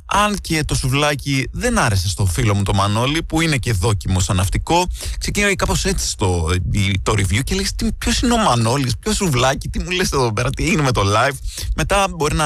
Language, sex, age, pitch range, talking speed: Greek, male, 20-39, 105-160 Hz, 210 wpm